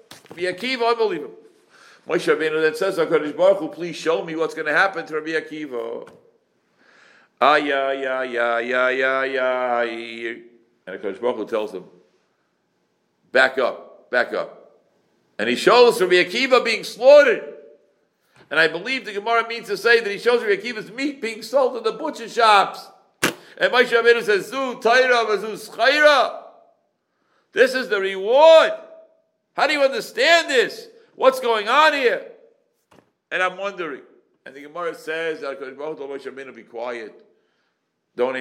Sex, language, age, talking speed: male, English, 60-79, 140 wpm